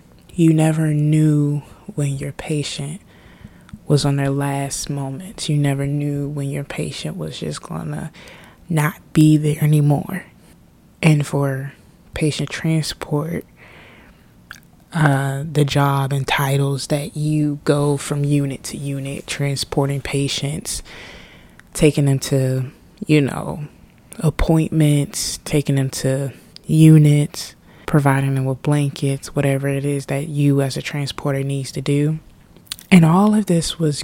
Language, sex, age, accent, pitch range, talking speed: English, female, 20-39, American, 140-155 Hz, 130 wpm